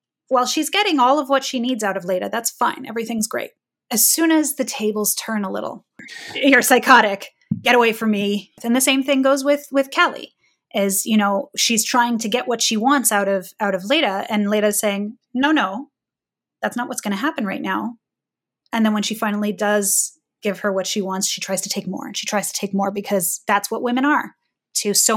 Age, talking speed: 20-39, 225 wpm